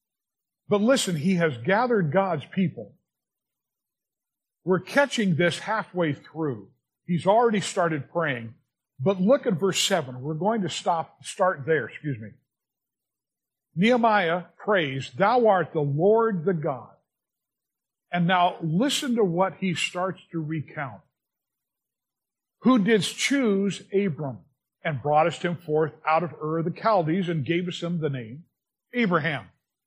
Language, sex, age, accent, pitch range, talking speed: English, male, 50-69, American, 155-200 Hz, 135 wpm